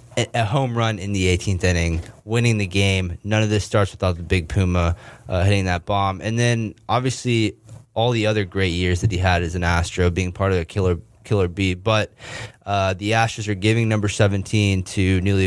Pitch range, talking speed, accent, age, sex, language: 90-110 Hz, 205 wpm, American, 20-39, male, English